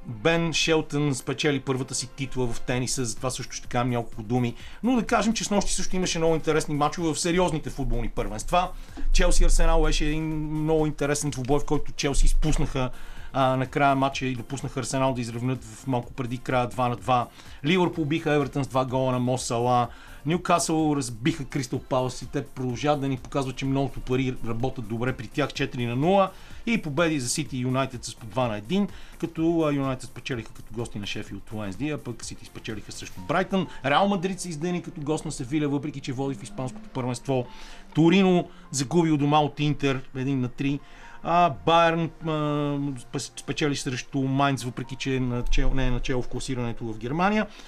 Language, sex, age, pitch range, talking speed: Bulgarian, male, 40-59, 125-155 Hz, 190 wpm